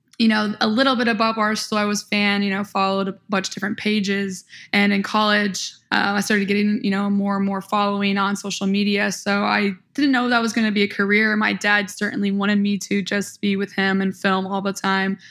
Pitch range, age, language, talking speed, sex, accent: 200-220 Hz, 10-29, English, 240 wpm, female, American